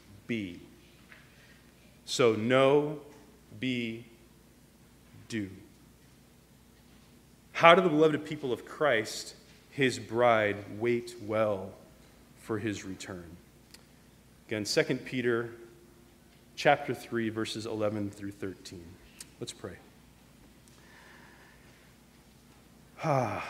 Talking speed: 80 wpm